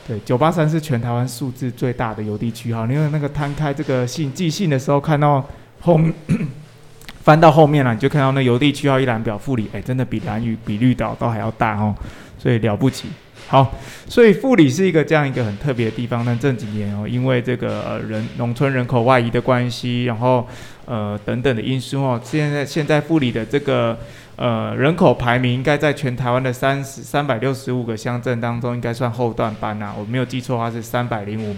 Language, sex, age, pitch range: Chinese, male, 20-39, 115-140 Hz